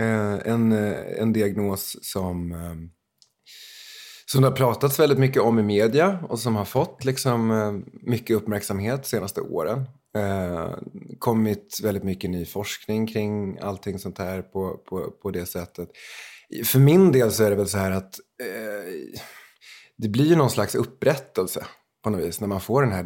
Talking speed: 150 wpm